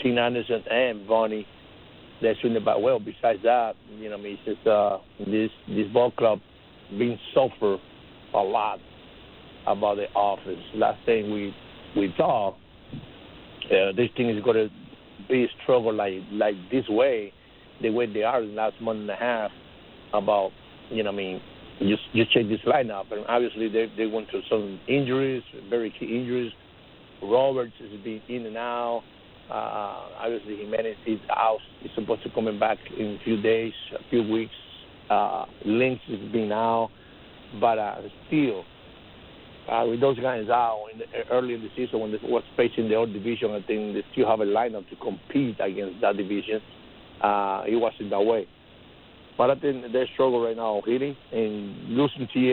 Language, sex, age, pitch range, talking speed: English, male, 60-79, 105-120 Hz, 180 wpm